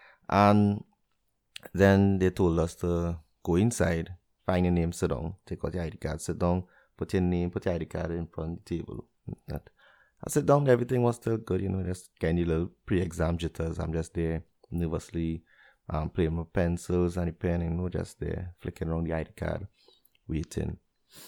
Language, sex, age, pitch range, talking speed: English, male, 30-49, 85-100 Hz, 190 wpm